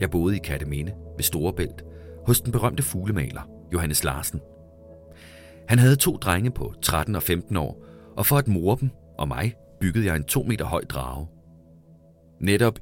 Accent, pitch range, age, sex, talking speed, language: native, 80-115 Hz, 30-49, male, 170 wpm, Danish